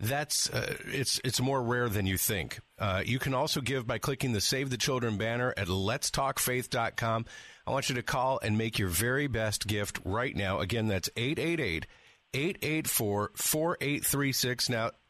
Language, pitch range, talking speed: English, 115-135 Hz, 165 wpm